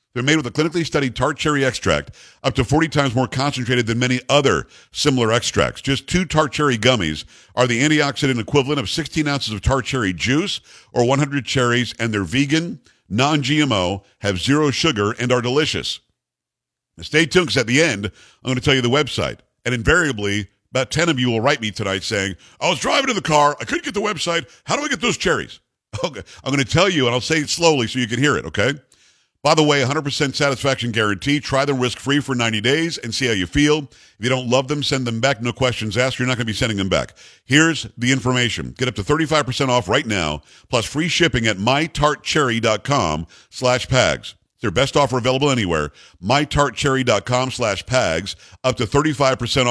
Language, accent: English, American